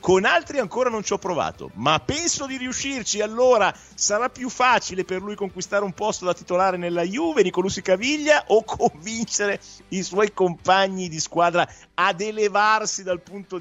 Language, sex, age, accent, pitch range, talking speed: Italian, male, 50-69, native, 140-205 Hz, 165 wpm